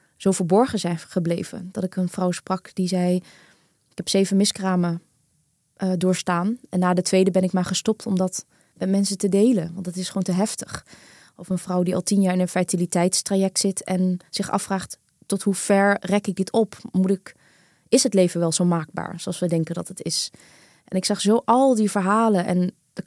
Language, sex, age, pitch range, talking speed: Dutch, female, 20-39, 180-210 Hz, 210 wpm